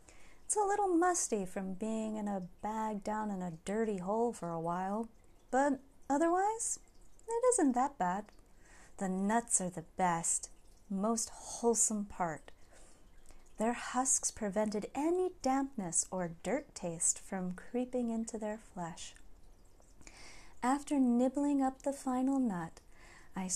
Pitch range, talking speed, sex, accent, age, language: 185-255 Hz, 130 wpm, female, American, 30-49, English